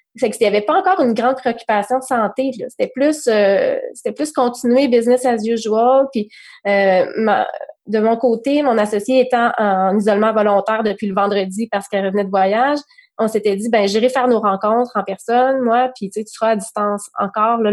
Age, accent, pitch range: 20-39, Canadian, 205-255 Hz